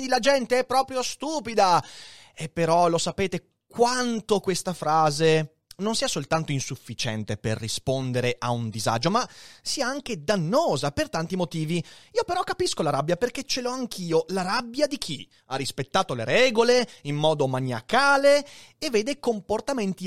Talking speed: 155 wpm